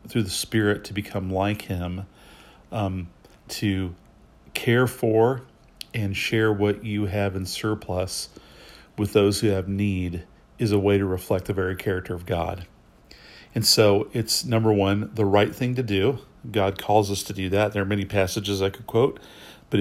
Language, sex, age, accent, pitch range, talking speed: English, male, 40-59, American, 95-110 Hz, 175 wpm